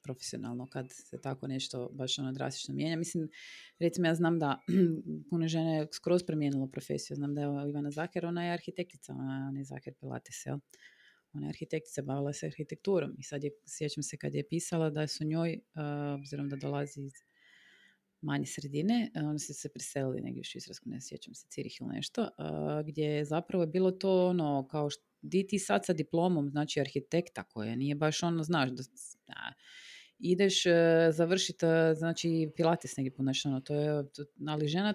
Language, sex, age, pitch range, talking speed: Croatian, female, 30-49, 145-180 Hz, 165 wpm